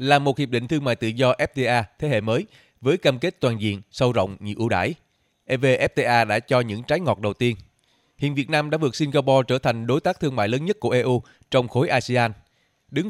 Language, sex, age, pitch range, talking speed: Vietnamese, male, 20-39, 115-145 Hz, 230 wpm